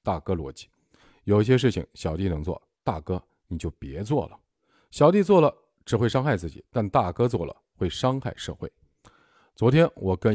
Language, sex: Chinese, male